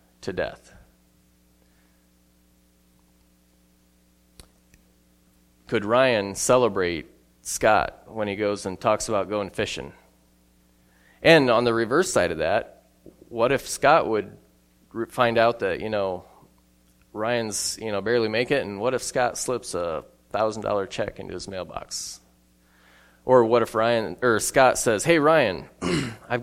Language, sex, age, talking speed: English, male, 20-39, 130 wpm